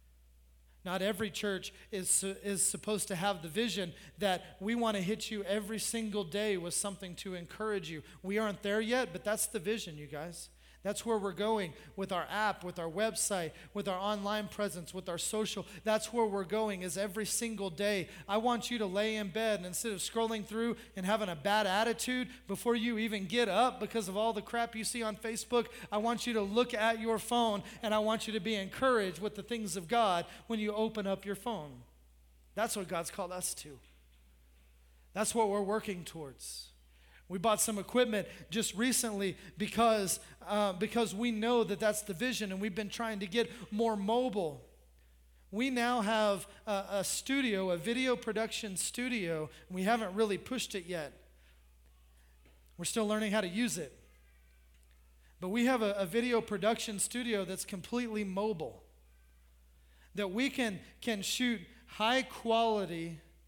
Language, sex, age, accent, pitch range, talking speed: English, male, 30-49, American, 170-220 Hz, 180 wpm